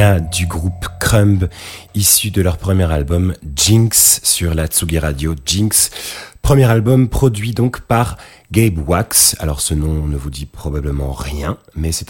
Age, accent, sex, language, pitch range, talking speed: 30-49, French, male, French, 90-125 Hz, 155 wpm